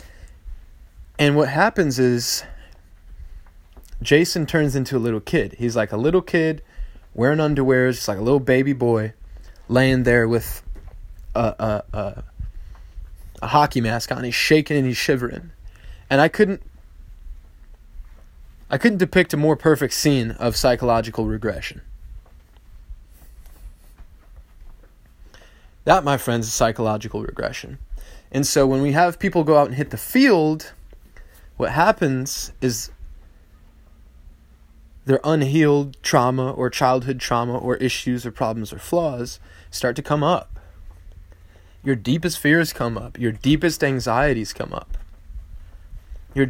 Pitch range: 80-135 Hz